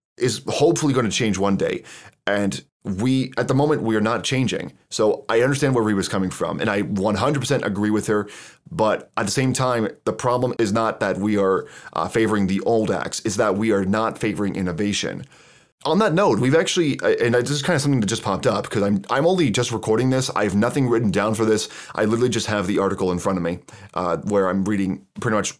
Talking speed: 235 wpm